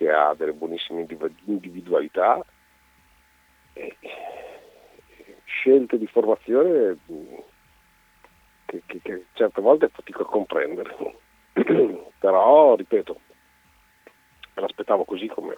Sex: male